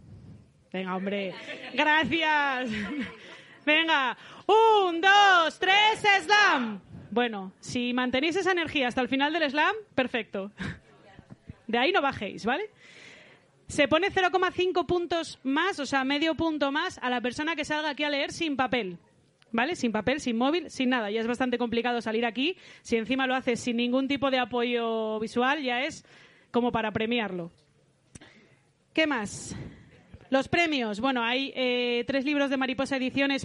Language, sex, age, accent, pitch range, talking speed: Spanish, female, 20-39, Spanish, 240-305 Hz, 155 wpm